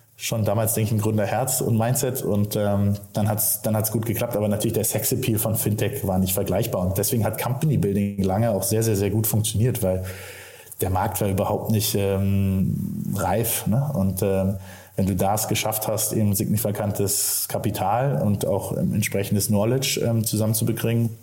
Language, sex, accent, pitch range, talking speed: German, male, German, 100-115 Hz, 180 wpm